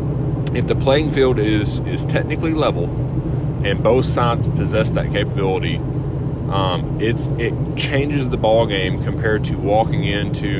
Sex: male